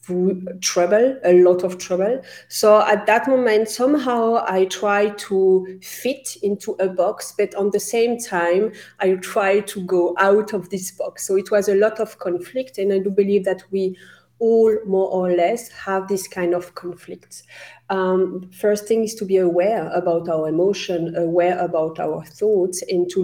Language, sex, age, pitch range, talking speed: English, female, 40-59, 180-215 Hz, 175 wpm